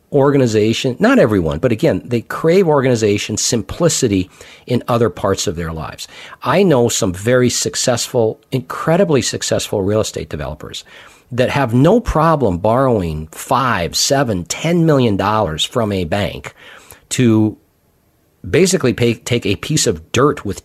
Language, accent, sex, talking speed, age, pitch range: English, American, male, 135 wpm, 50-69, 110-155 Hz